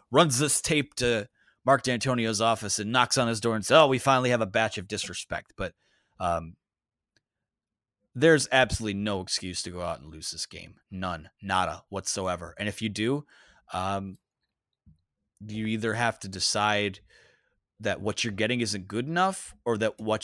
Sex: male